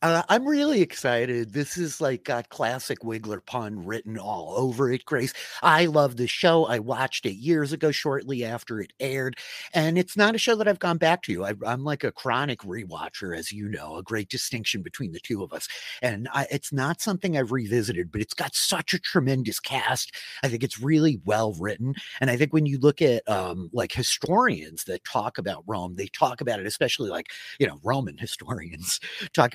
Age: 30-49